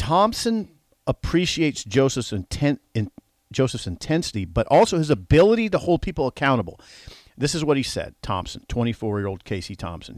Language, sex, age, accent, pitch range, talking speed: English, male, 50-69, American, 105-135 Hz, 130 wpm